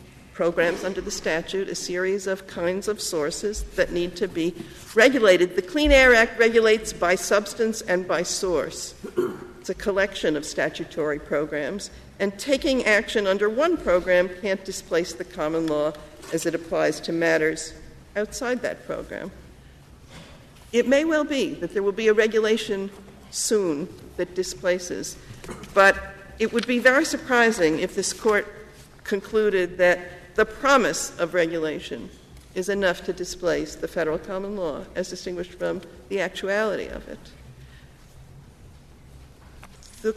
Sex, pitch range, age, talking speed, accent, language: female, 175-215 Hz, 50-69, 140 wpm, American, English